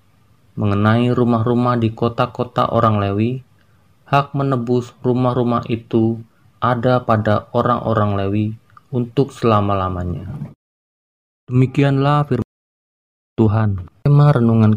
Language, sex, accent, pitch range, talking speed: Indonesian, male, native, 110-130 Hz, 85 wpm